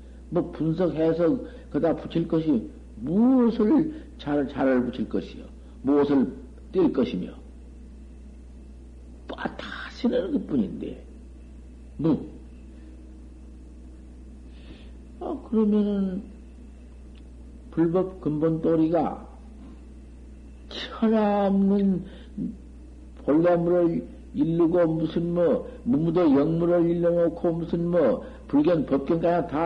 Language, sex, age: Korean, male, 60-79